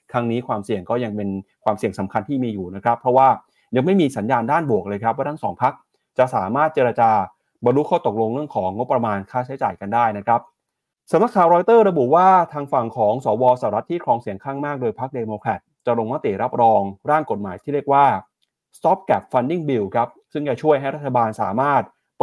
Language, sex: Thai, male